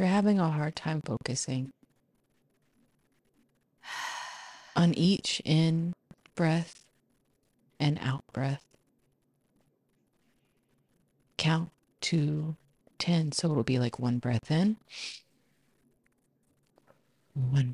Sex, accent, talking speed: female, American, 75 wpm